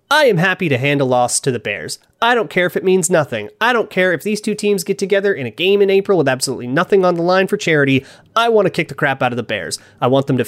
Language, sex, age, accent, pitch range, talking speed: English, male, 30-49, American, 130-185 Hz, 305 wpm